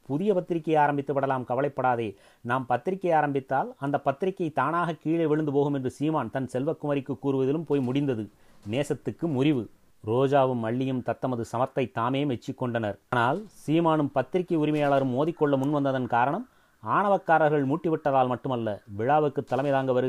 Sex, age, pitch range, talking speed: male, 30-49, 125-150 Hz, 120 wpm